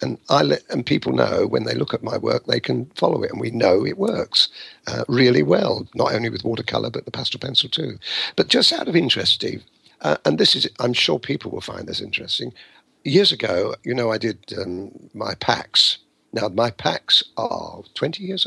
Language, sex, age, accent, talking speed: English, male, 50-69, British, 205 wpm